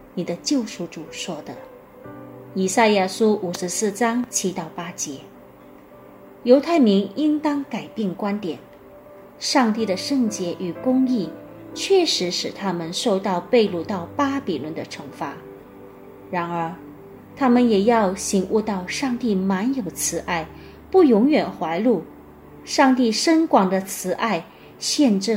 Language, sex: Indonesian, female